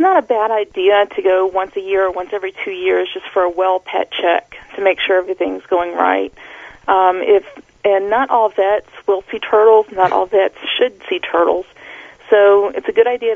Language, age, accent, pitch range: English, 40-59, American, 185-235 Hz